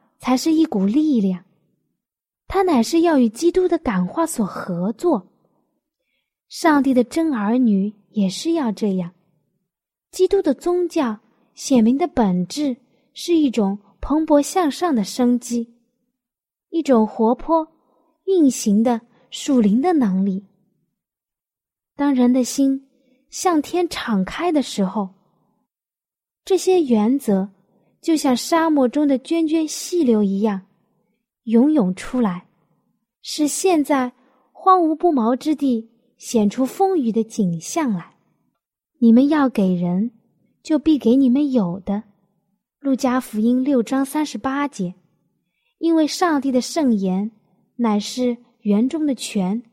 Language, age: Chinese, 20-39